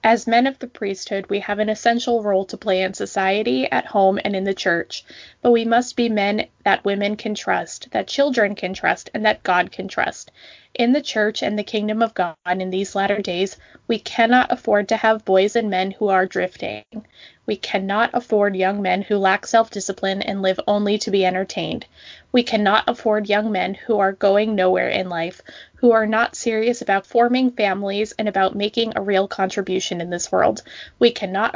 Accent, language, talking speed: American, English, 200 wpm